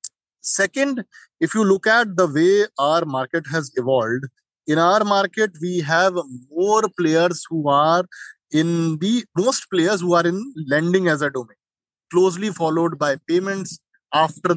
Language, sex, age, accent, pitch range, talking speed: English, male, 30-49, Indian, 150-195 Hz, 150 wpm